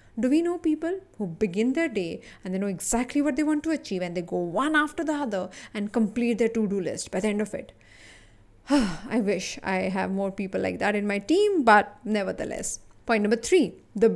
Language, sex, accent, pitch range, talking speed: English, female, Indian, 185-230 Hz, 215 wpm